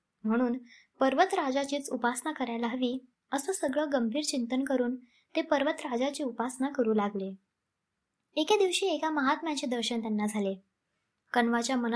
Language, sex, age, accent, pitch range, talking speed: Marathi, male, 20-39, native, 235-295 Hz, 85 wpm